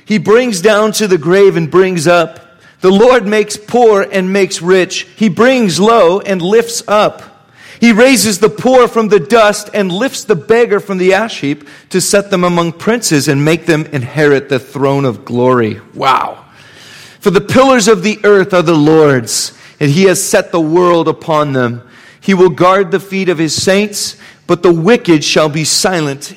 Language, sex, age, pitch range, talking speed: English, male, 40-59, 150-200 Hz, 185 wpm